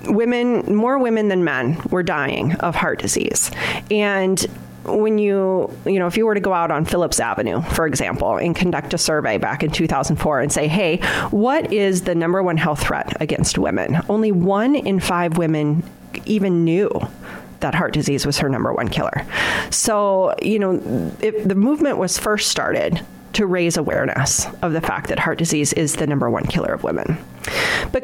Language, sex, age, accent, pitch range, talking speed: English, female, 30-49, American, 155-205 Hz, 185 wpm